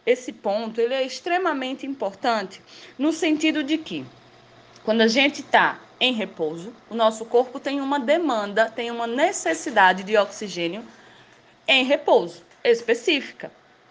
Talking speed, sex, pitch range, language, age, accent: 130 wpm, female, 205-305 Hz, Portuguese, 20-39, Brazilian